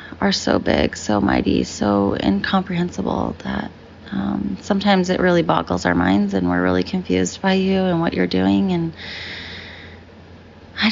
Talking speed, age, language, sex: 150 wpm, 20-39, English, female